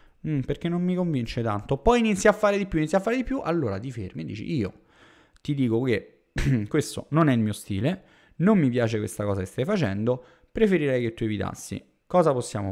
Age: 30-49